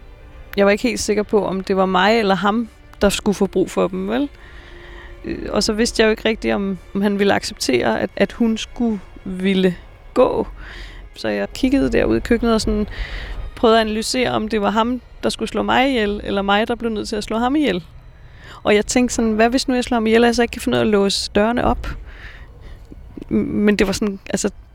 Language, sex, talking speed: Danish, female, 225 wpm